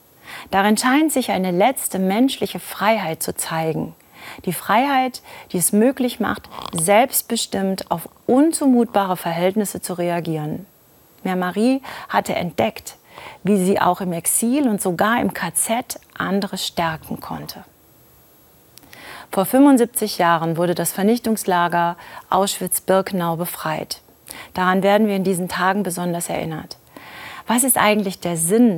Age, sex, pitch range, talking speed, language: 40-59, female, 175-225 Hz, 120 wpm, German